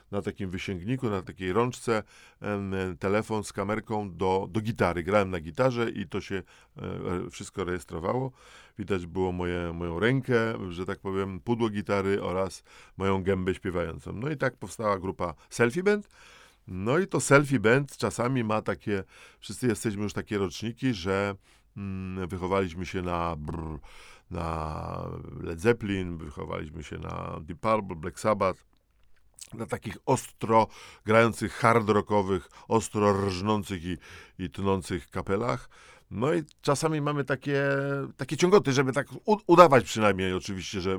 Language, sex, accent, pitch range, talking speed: Polish, male, native, 95-115 Hz, 135 wpm